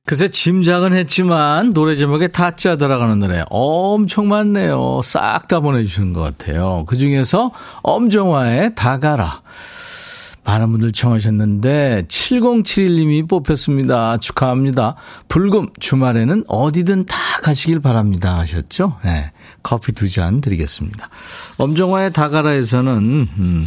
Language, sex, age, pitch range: Korean, male, 40-59, 110-175 Hz